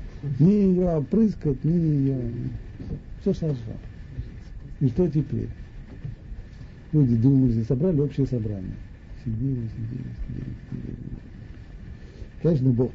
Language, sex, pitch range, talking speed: Russian, male, 115-155 Hz, 95 wpm